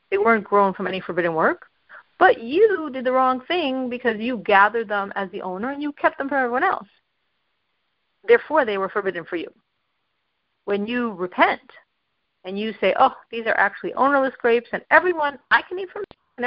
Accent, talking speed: American, 190 wpm